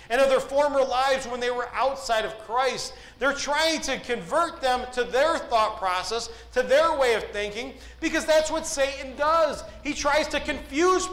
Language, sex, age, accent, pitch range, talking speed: English, male, 40-59, American, 230-310 Hz, 185 wpm